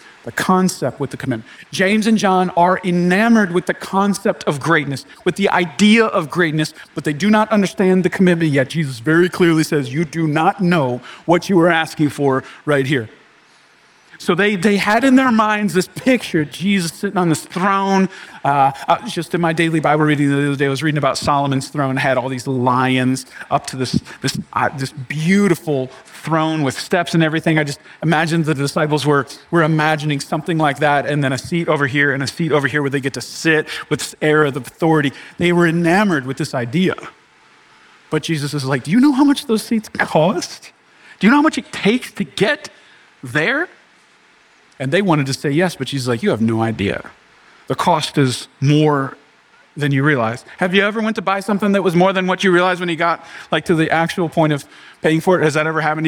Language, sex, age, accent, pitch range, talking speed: English, male, 40-59, American, 145-185 Hz, 215 wpm